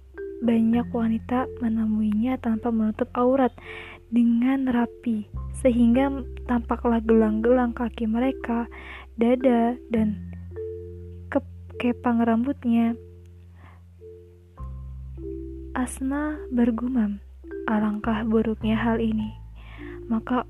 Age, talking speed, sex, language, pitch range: 20-39, 75 wpm, female, Indonesian, 220-260 Hz